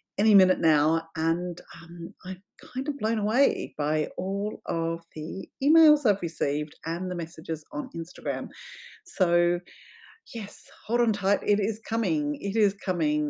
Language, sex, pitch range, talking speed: English, female, 160-225 Hz, 150 wpm